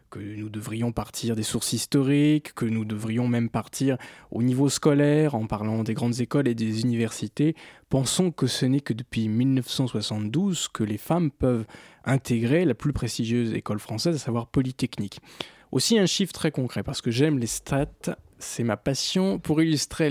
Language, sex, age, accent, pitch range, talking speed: French, male, 20-39, French, 115-155 Hz, 175 wpm